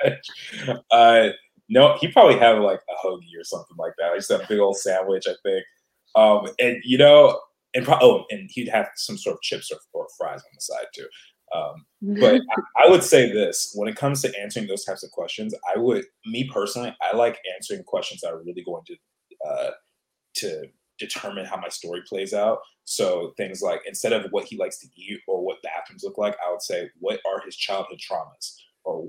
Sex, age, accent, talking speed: male, 20-39, American, 210 wpm